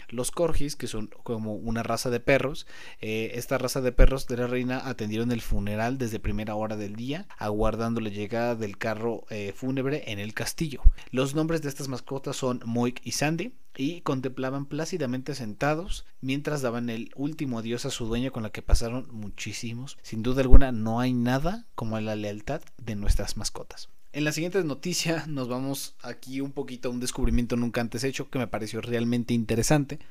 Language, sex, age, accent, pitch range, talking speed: Spanish, male, 30-49, Mexican, 115-140 Hz, 185 wpm